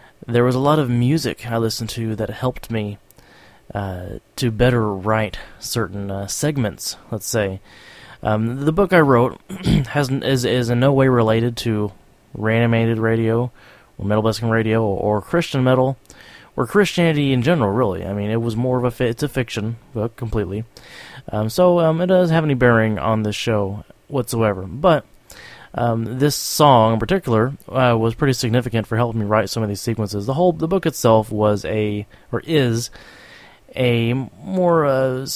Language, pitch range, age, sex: English, 105-135 Hz, 20-39, male